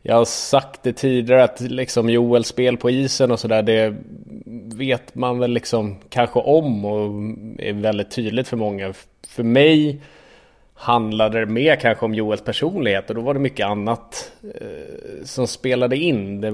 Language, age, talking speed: English, 30-49, 165 wpm